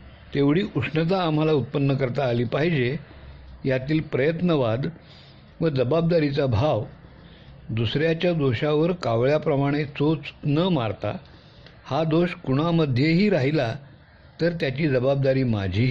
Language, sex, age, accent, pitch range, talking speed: Hindi, male, 60-79, native, 125-155 Hz, 95 wpm